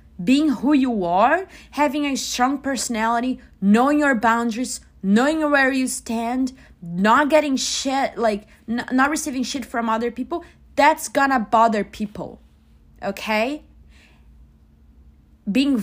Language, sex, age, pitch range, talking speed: English, female, 20-39, 220-305 Hz, 120 wpm